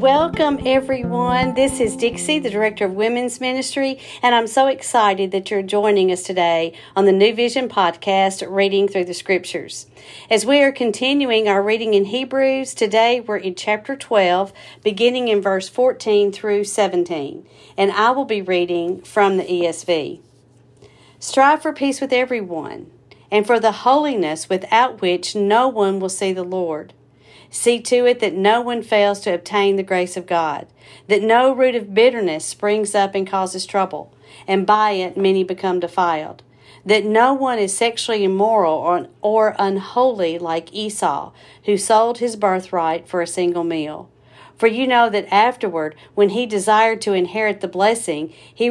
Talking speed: 165 wpm